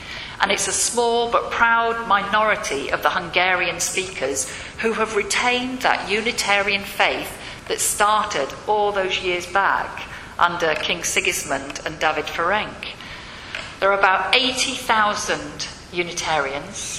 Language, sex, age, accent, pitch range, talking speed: English, female, 50-69, British, 175-215 Hz, 120 wpm